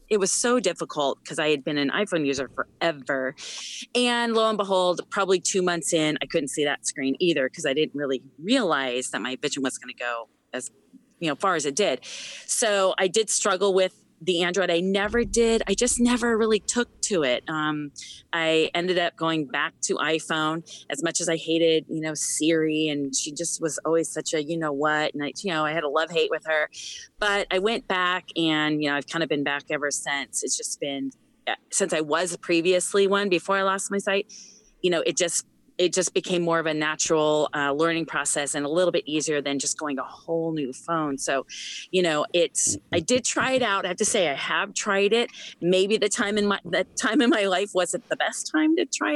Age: 30-49